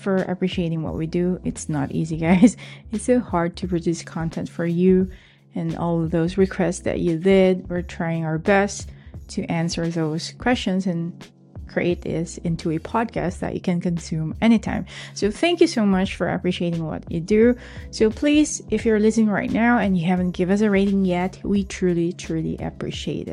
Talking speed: 190 wpm